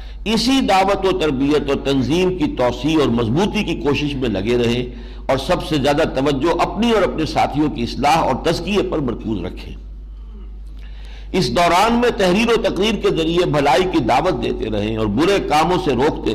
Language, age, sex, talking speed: Urdu, 60-79, male, 180 wpm